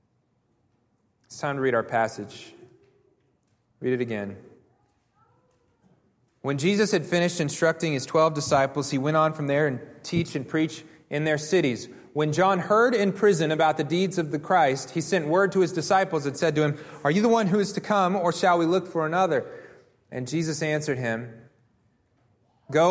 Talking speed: 180 wpm